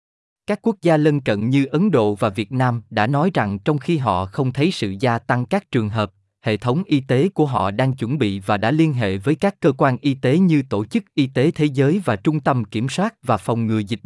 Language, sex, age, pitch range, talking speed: Vietnamese, male, 20-39, 110-160 Hz, 255 wpm